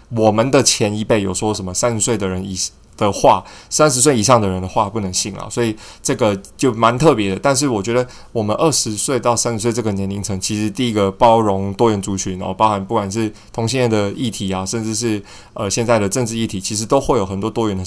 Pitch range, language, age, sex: 100-120 Hz, Chinese, 20-39, male